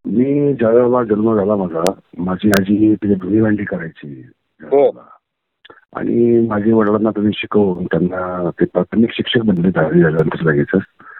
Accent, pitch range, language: native, 105-145 Hz, Marathi